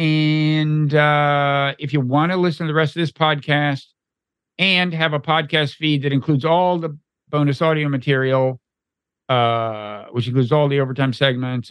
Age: 50-69